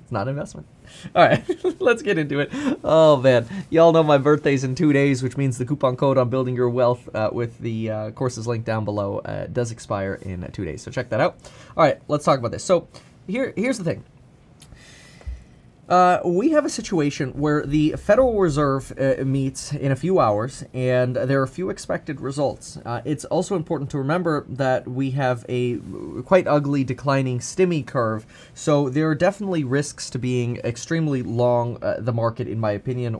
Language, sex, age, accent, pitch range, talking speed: English, male, 20-39, American, 115-150 Hz, 195 wpm